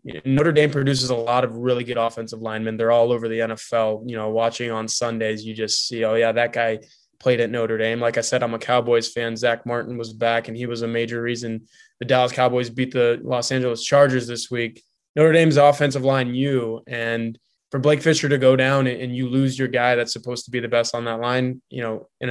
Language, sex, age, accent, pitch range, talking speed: English, male, 20-39, American, 115-130 Hz, 235 wpm